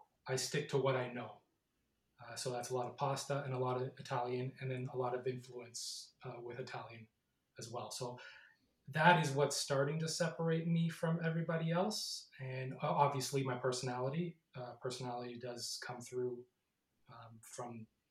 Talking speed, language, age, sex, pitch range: 170 wpm, English, 20-39, male, 125-140 Hz